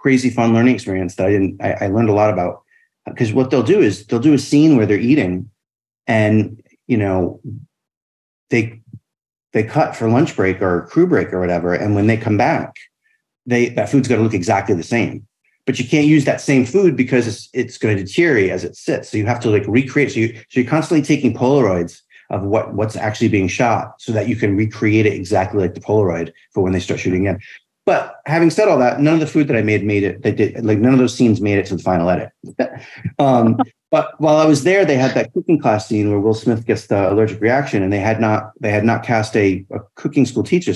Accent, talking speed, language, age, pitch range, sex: American, 240 wpm, English, 30-49, 100-125 Hz, male